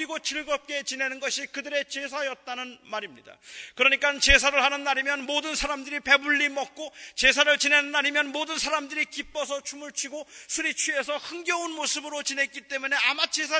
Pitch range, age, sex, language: 255-305 Hz, 40-59, male, Korean